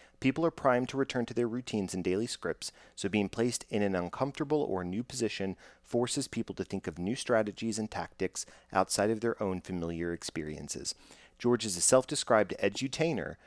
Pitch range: 90-125 Hz